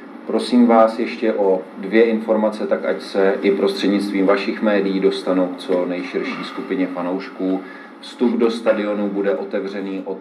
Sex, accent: male, native